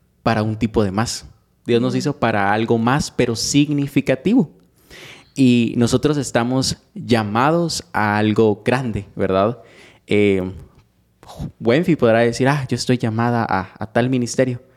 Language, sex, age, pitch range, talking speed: Spanish, male, 20-39, 115-150 Hz, 135 wpm